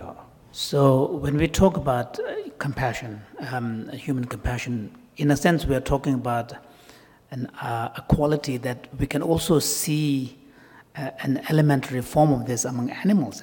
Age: 60-79